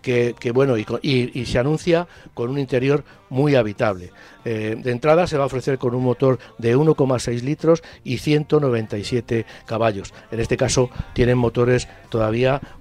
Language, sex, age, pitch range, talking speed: Spanish, male, 60-79, 110-135 Hz, 165 wpm